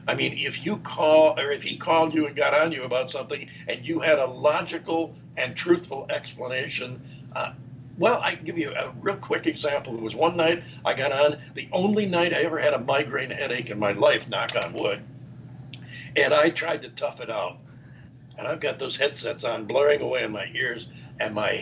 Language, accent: English, American